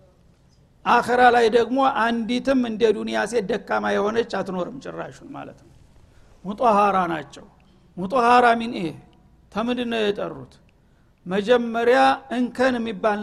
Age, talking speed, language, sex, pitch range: 60-79, 90 wpm, Amharic, male, 200-245 Hz